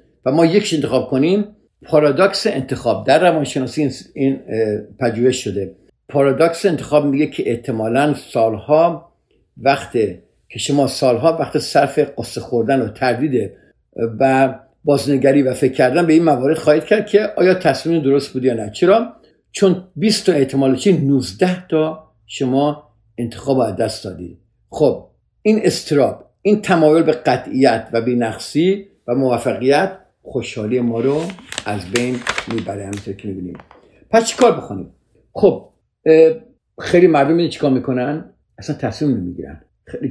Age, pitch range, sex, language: 50-69, 115-155 Hz, male, Persian